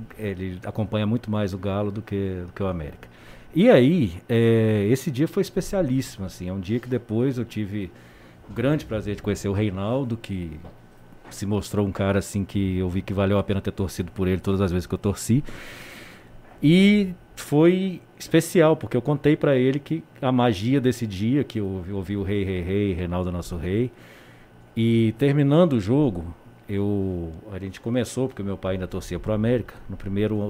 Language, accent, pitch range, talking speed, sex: Portuguese, Brazilian, 95-135 Hz, 185 wpm, male